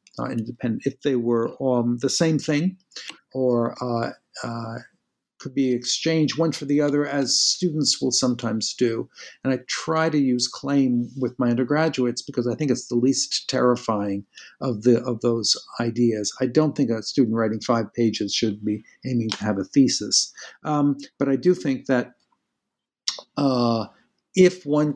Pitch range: 115-145 Hz